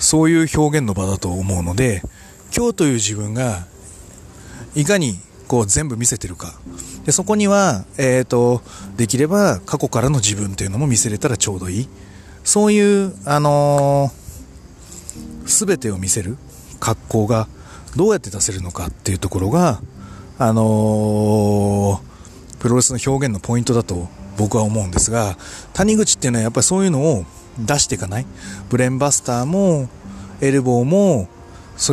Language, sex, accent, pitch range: Japanese, male, native, 95-145 Hz